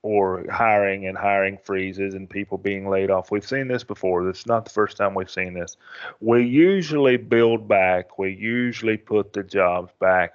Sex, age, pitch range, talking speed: male, 30-49, 100-125 Hz, 190 wpm